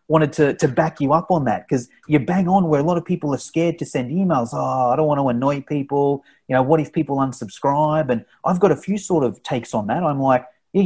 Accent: Australian